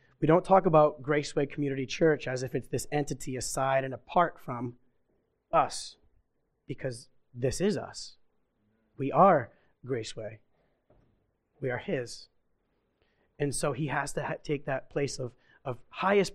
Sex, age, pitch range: male, 30-49, 125-155 Hz